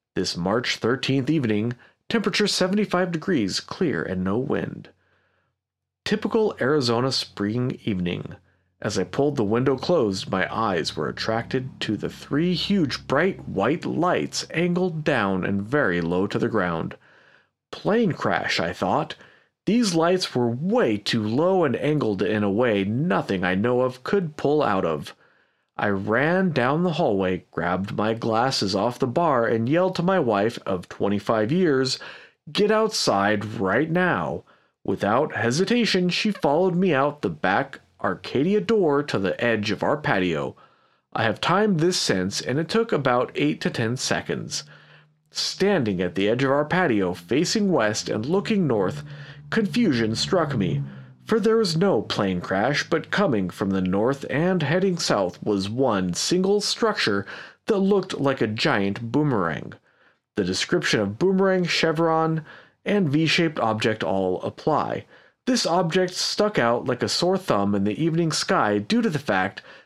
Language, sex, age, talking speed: English, male, 40-59, 155 wpm